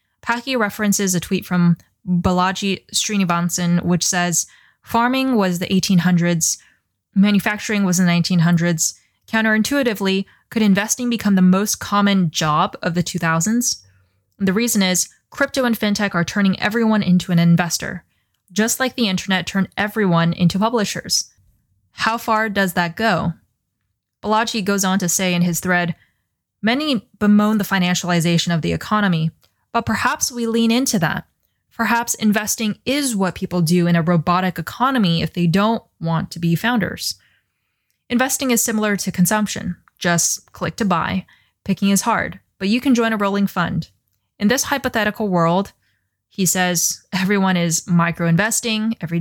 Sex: female